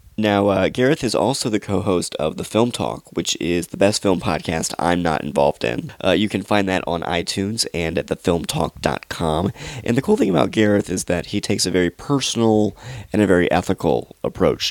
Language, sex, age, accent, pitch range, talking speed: English, male, 30-49, American, 85-105 Hz, 200 wpm